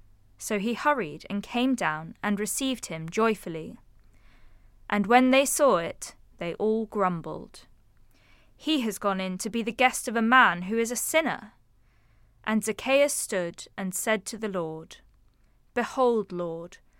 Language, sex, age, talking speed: English, female, 20-39, 150 wpm